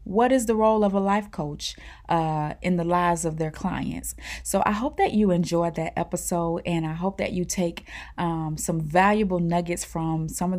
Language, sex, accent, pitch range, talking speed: English, female, American, 170-205 Hz, 205 wpm